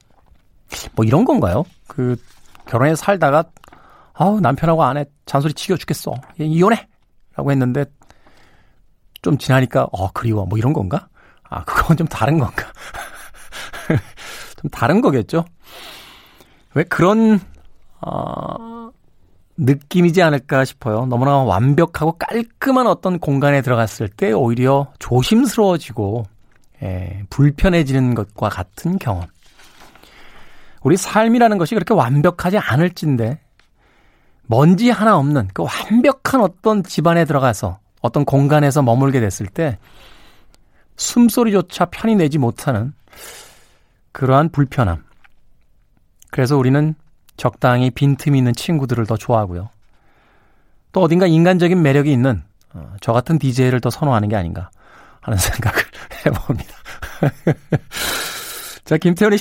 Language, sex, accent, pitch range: Korean, male, native, 115-175 Hz